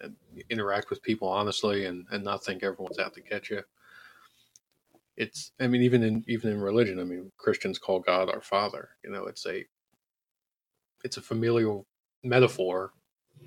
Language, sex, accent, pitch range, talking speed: English, male, American, 95-120 Hz, 165 wpm